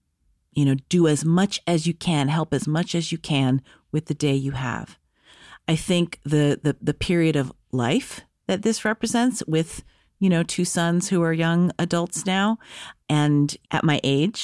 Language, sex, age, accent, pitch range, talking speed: English, female, 40-59, American, 140-170 Hz, 185 wpm